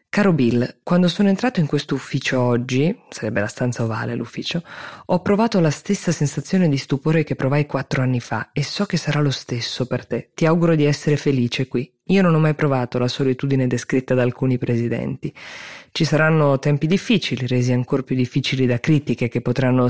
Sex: female